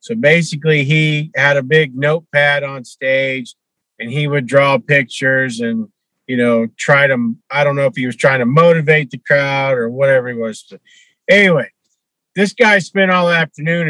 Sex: male